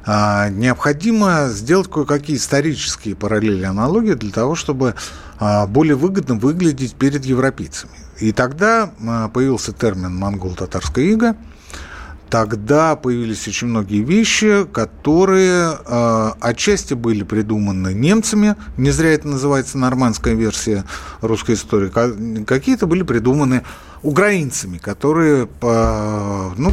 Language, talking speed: Russian, 100 wpm